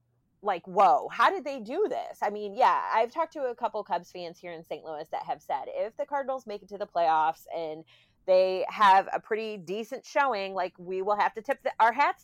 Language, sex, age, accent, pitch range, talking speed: English, female, 30-49, American, 175-220 Hz, 240 wpm